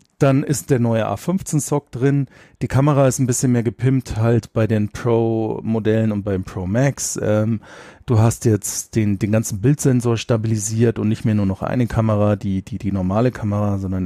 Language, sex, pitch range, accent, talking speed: German, male, 105-130 Hz, German, 185 wpm